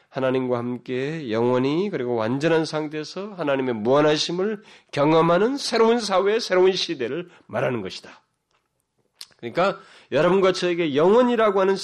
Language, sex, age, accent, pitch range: Korean, male, 30-49, native, 120-180 Hz